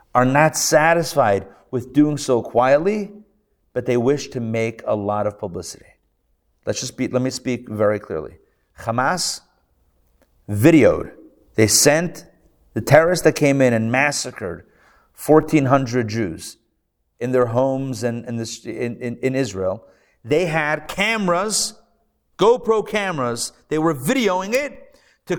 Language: English